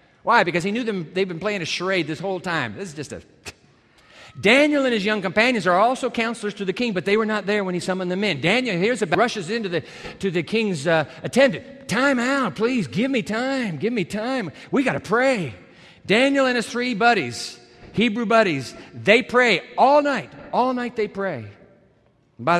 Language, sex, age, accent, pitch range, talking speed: English, male, 50-69, American, 160-220 Hz, 210 wpm